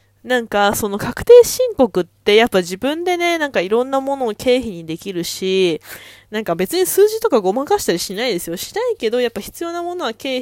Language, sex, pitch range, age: Japanese, female, 175-250 Hz, 20-39